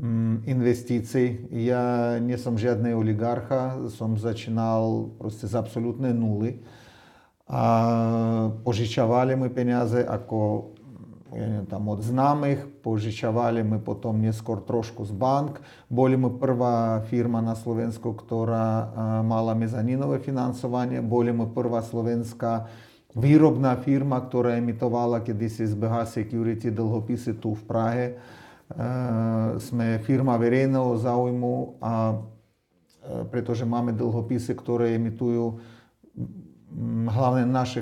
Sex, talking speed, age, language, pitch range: male, 95 wpm, 40-59, Czech, 115-125 Hz